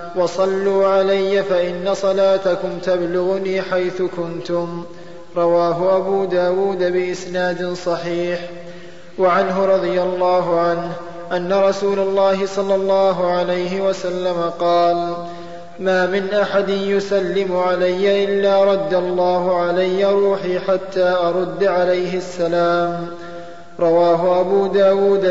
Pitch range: 175-195 Hz